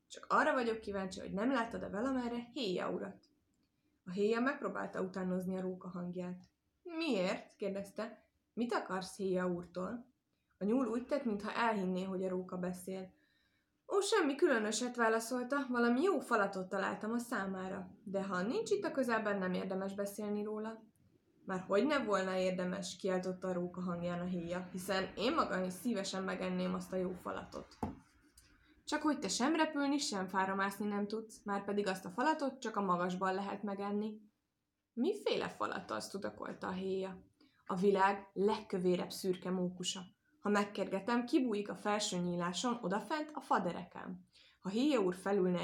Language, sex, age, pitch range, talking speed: Hungarian, female, 20-39, 185-240 Hz, 155 wpm